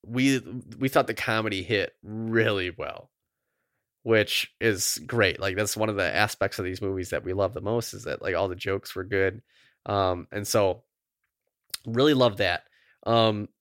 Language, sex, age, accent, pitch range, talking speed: English, male, 20-39, American, 100-130 Hz, 175 wpm